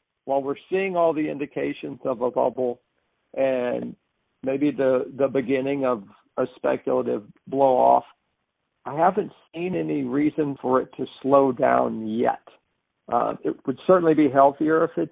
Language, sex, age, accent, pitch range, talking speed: English, male, 50-69, American, 135-155 Hz, 145 wpm